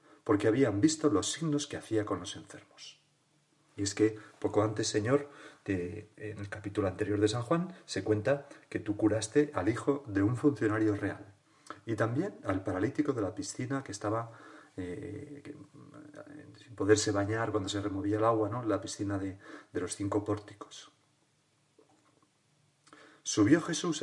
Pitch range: 105-150 Hz